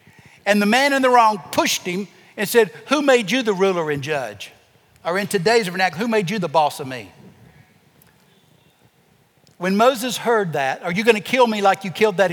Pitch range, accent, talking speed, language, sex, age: 145-245 Hz, American, 205 wpm, English, male, 60-79